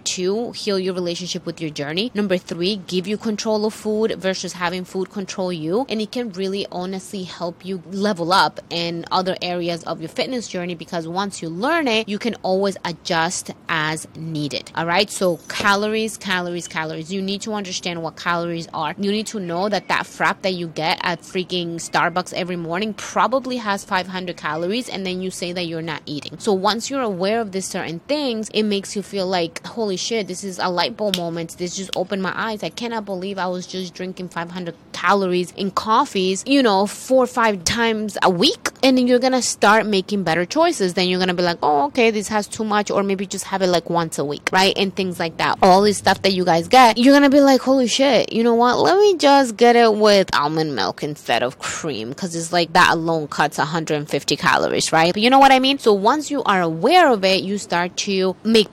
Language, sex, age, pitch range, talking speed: English, female, 20-39, 175-215 Hz, 225 wpm